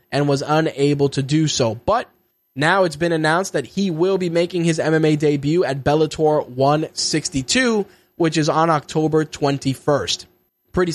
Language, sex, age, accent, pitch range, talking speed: English, male, 20-39, American, 135-160 Hz, 155 wpm